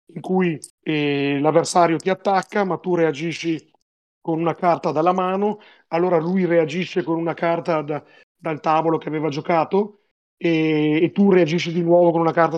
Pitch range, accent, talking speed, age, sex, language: 150-175 Hz, native, 165 wpm, 30-49, male, Italian